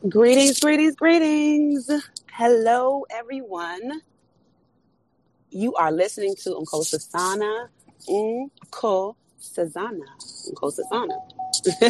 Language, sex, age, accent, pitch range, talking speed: English, female, 30-49, American, 180-275 Hz, 65 wpm